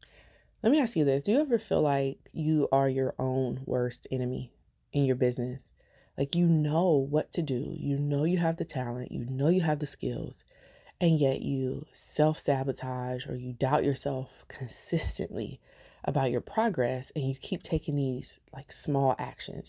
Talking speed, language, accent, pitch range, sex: 175 wpm, English, American, 130-155 Hz, female